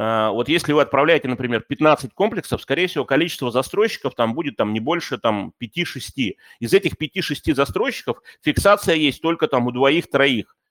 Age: 30-49